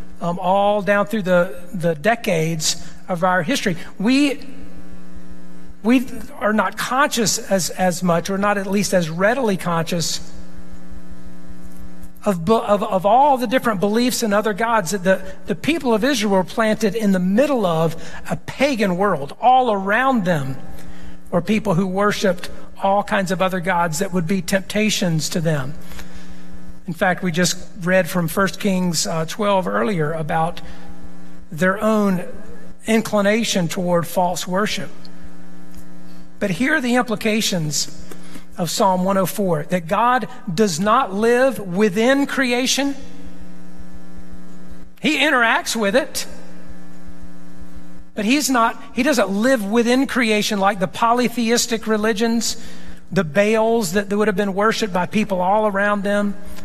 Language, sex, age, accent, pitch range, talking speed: English, male, 50-69, American, 145-220 Hz, 135 wpm